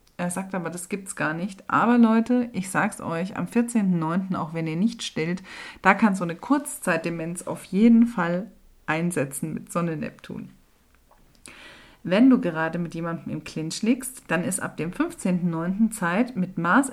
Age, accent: 40-59, German